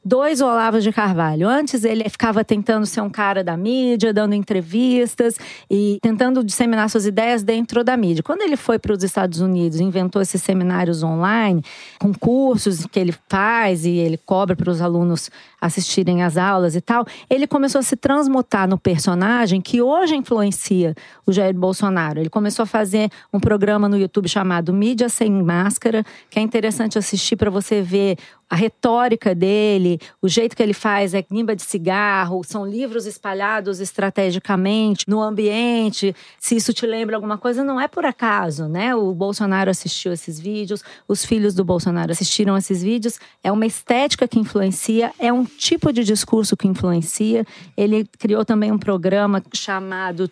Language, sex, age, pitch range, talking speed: Portuguese, female, 40-59, 190-230 Hz, 170 wpm